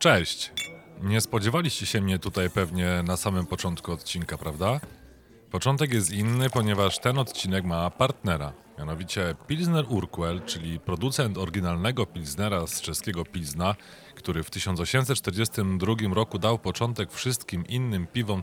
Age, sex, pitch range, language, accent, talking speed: 30-49, male, 90-115 Hz, Polish, native, 125 wpm